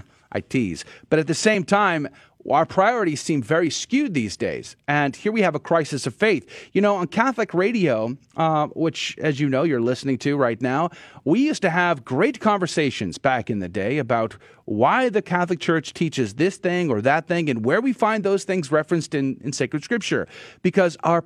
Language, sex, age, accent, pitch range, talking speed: English, male, 40-59, American, 140-200 Hz, 200 wpm